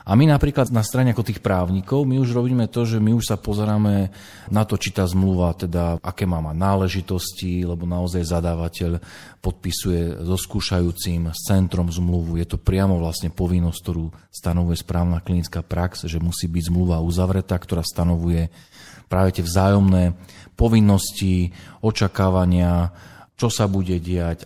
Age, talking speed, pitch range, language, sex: 40-59, 150 wpm, 85-110 Hz, Slovak, male